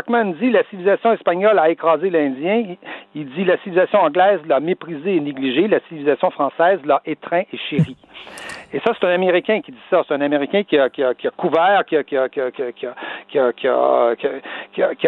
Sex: male